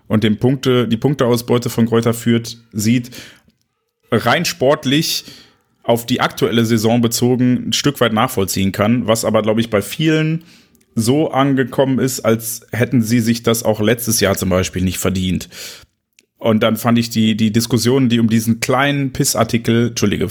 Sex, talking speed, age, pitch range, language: male, 165 wpm, 30-49, 110-130 Hz, German